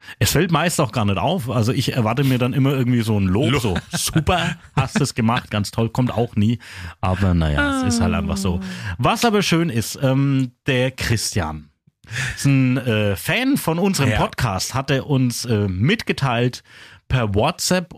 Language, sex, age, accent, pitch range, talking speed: German, male, 40-59, German, 115-185 Hz, 185 wpm